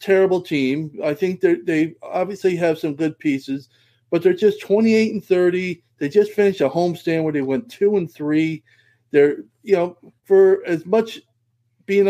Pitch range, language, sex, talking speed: 135-190 Hz, English, male, 180 wpm